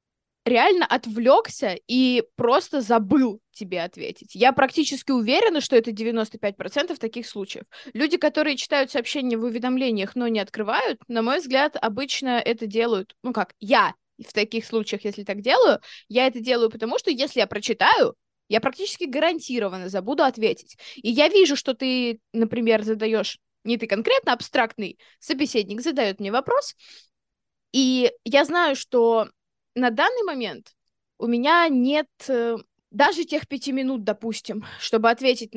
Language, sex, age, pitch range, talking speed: Russian, female, 20-39, 220-280 Hz, 140 wpm